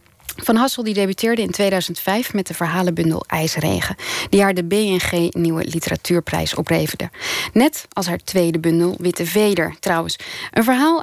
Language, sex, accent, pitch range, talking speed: Dutch, female, Dutch, 170-225 Hz, 135 wpm